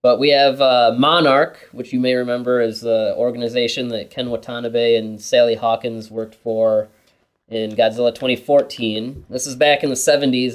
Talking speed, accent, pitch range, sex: 170 wpm, American, 115-135 Hz, male